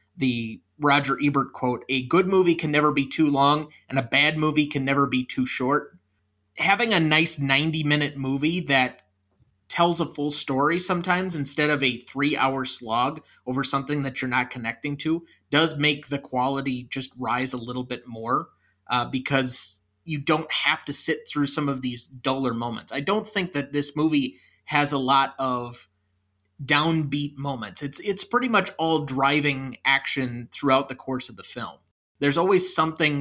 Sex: male